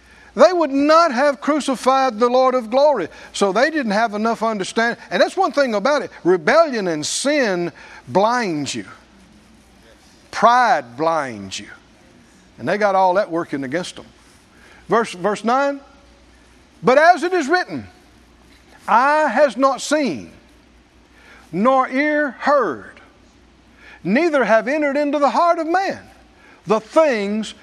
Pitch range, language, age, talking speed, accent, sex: 225-300 Hz, English, 60-79, 135 wpm, American, male